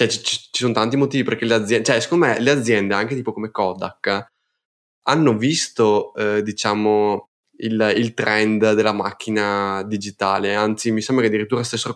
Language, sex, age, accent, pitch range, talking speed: Italian, male, 10-29, native, 105-120 Hz, 165 wpm